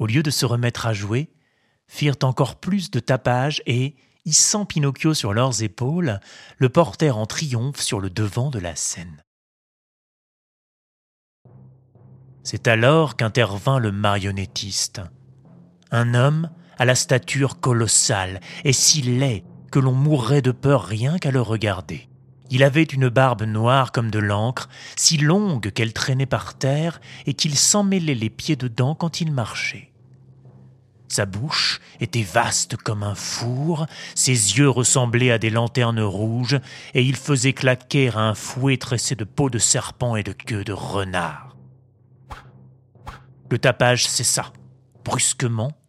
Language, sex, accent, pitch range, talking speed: French, male, French, 115-140 Hz, 145 wpm